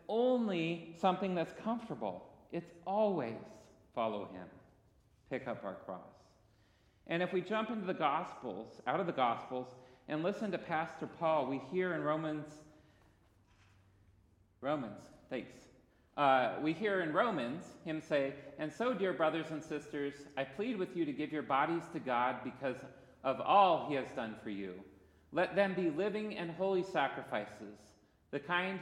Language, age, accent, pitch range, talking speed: English, 40-59, American, 110-170 Hz, 155 wpm